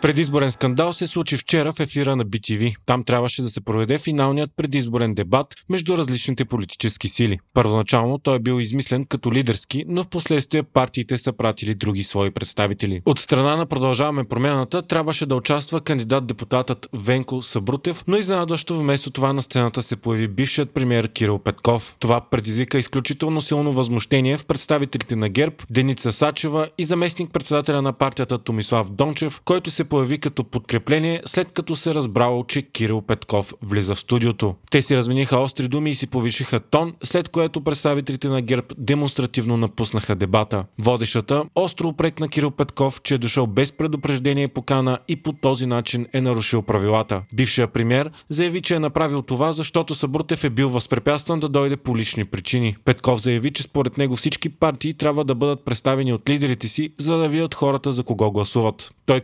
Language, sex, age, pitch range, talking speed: Bulgarian, male, 30-49, 120-150 Hz, 170 wpm